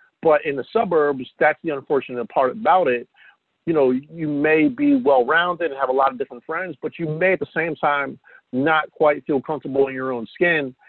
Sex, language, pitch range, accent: male, English, 130-175 Hz, American